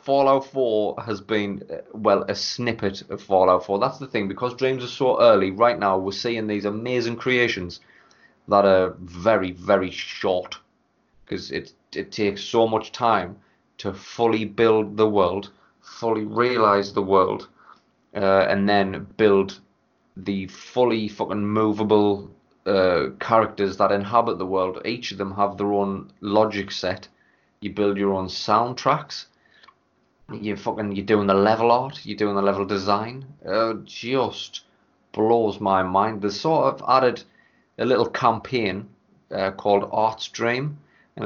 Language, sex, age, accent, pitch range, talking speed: English, male, 30-49, British, 100-115 Hz, 150 wpm